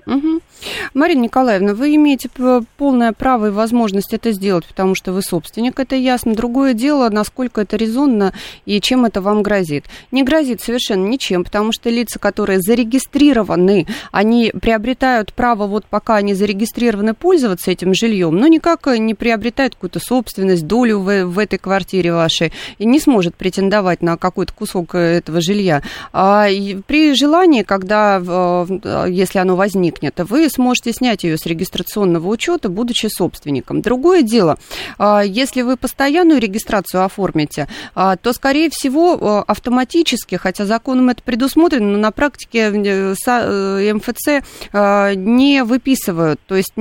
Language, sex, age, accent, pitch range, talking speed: Russian, female, 30-49, native, 190-250 Hz, 135 wpm